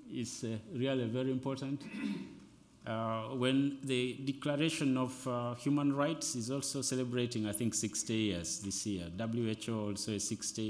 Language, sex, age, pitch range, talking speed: English, male, 50-69, 105-145 Hz, 140 wpm